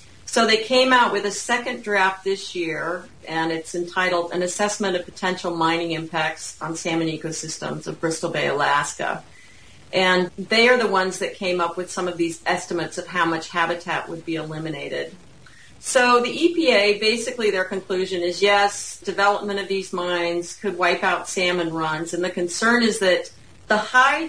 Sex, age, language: female, 40-59, English